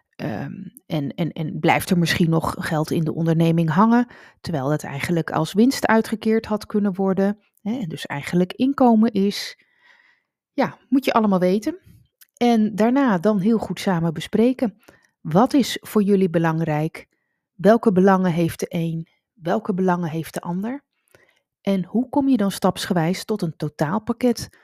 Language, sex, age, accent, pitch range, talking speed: Dutch, female, 30-49, Dutch, 165-215 Hz, 150 wpm